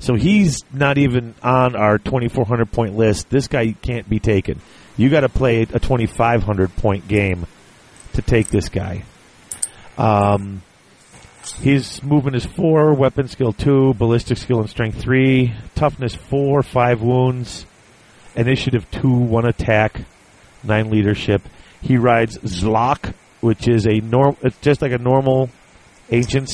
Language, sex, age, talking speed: English, male, 40-59, 135 wpm